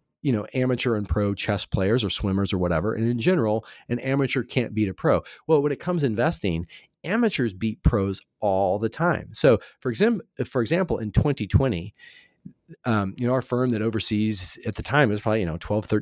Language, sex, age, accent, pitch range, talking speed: English, male, 30-49, American, 105-130 Hz, 200 wpm